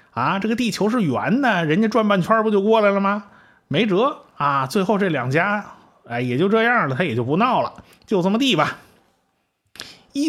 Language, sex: Chinese, male